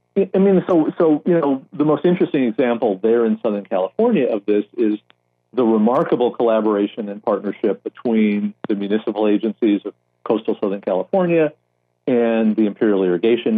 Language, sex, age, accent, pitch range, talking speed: English, male, 50-69, American, 90-120 Hz, 150 wpm